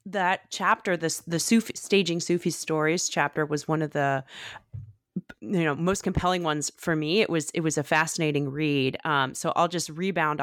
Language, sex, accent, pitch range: English, female, American, 150-175 Hz